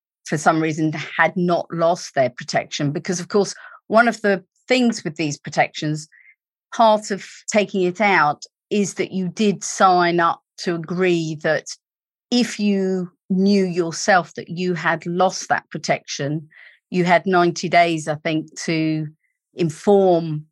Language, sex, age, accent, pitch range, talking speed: English, female, 40-59, British, 155-185 Hz, 145 wpm